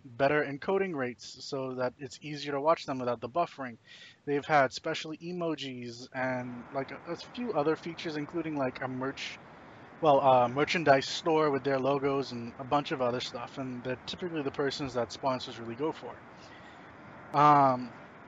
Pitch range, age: 130-160 Hz, 20-39